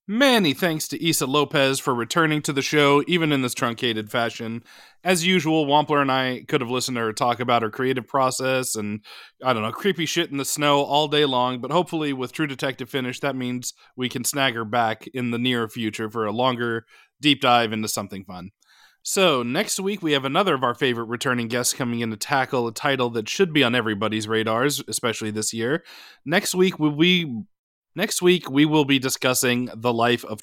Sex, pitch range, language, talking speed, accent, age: male, 115-145 Hz, English, 210 wpm, American, 30-49